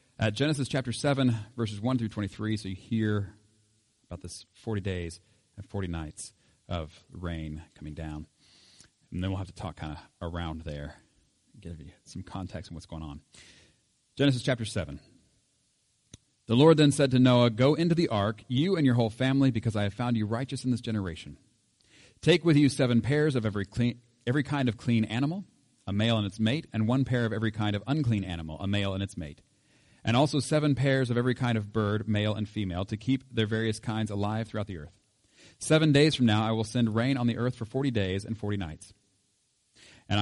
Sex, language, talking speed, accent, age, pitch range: male, English, 205 wpm, American, 40-59, 100-125 Hz